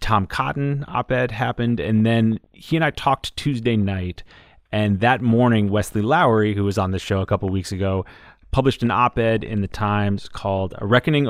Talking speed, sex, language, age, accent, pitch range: 185 wpm, male, English, 30-49, American, 95-115 Hz